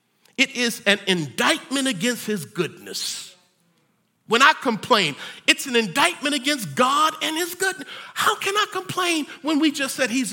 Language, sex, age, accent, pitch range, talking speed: English, male, 50-69, American, 245-330 Hz, 155 wpm